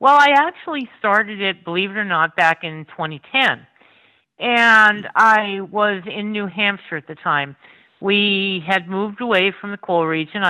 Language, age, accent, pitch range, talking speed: English, 50-69, American, 160-210 Hz, 165 wpm